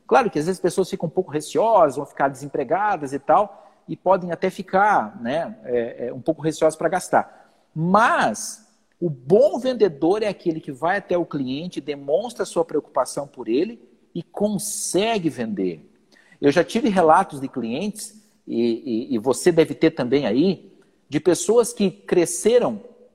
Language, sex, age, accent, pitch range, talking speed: Portuguese, male, 50-69, Brazilian, 160-230 Hz, 160 wpm